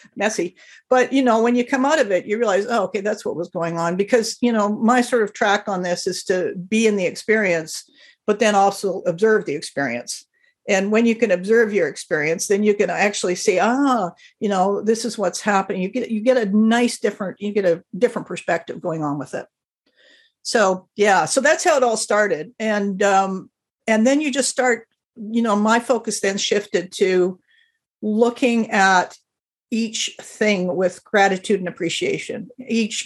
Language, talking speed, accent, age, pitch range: English, 195 wpm, American, 50-69, 185-230 Hz